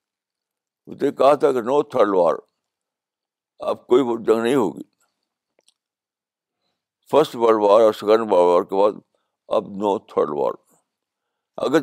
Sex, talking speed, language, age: male, 130 wpm, Urdu, 60-79